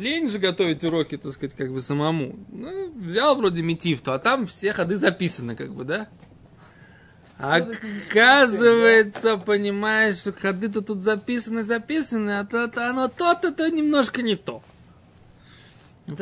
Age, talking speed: 20-39, 135 wpm